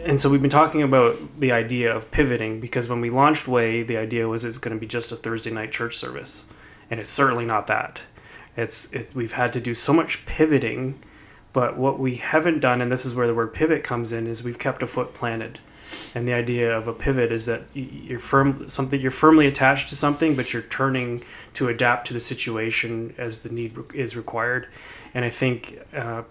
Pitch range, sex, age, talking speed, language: 115-130 Hz, male, 20-39, 215 wpm, English